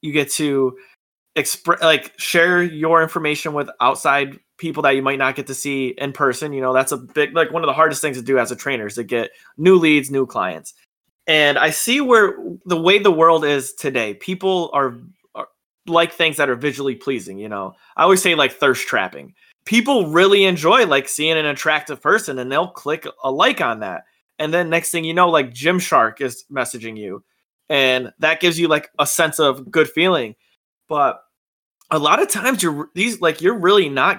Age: 20-39